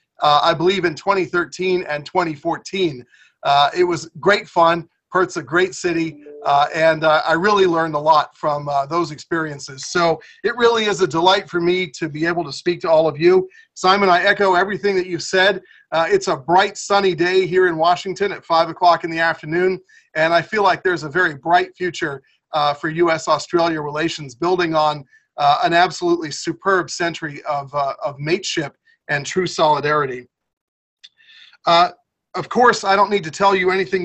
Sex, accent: male, American